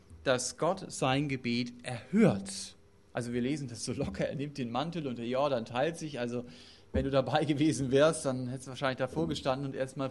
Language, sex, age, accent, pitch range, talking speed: German, male, 40-59, German, 100-155 Hz, 210 wpm